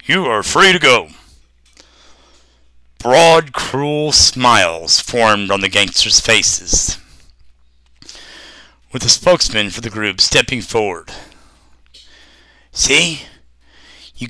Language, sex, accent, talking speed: English, male, American, 95 wpm